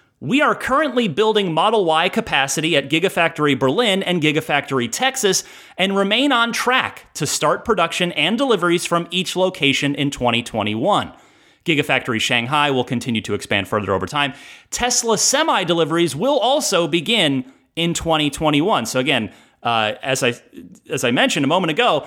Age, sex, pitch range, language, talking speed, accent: 30-49, male, 125-175 Hz, English, 150 wpm, American